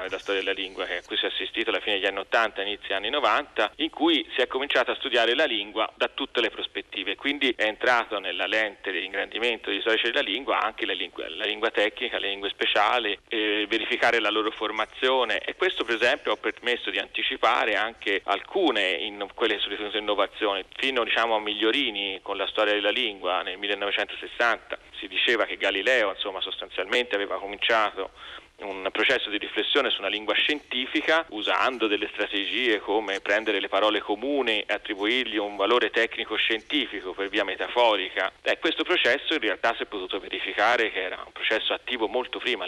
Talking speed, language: 185 wpm, Italian